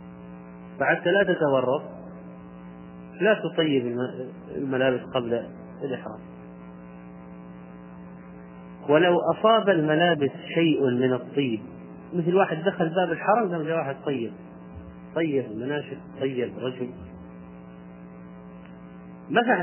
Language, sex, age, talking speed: Arabic, male, 30-49, 85 wpm